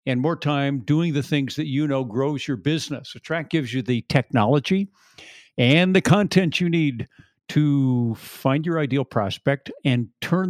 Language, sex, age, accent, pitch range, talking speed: English, male, 50-69, American, 125-155 Hz, 170 wpm